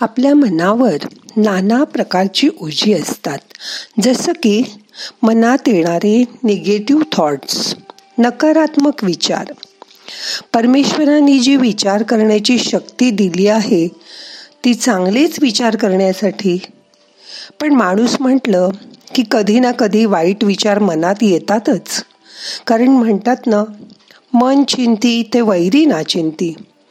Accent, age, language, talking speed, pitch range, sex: native, 50-69, Marathi, 100 wpm, 195-255 Hz, female